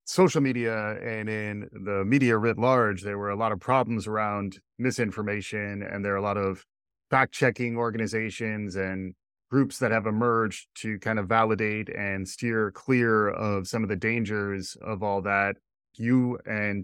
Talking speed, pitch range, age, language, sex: 170 wpm, 100-120 Hz, 30-49, English, male